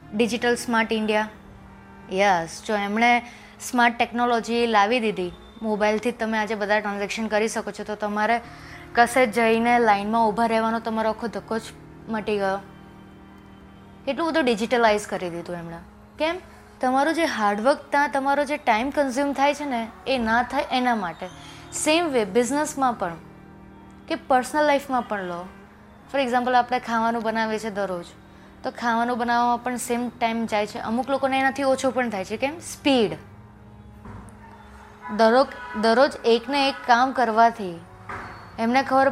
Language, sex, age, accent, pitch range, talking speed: Gujarati, female, 20-39, native, 205-260 Hz, 135 wpm